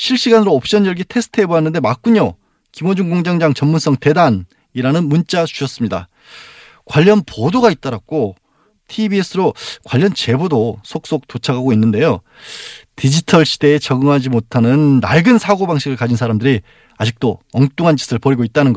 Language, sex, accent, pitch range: Korean, male, native, 130-195 Hz